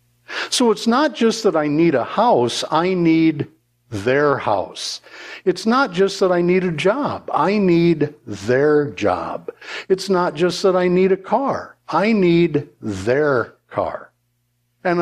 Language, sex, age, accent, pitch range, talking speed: English, male, 60-79, American, 120-195 Hz, 150 wpm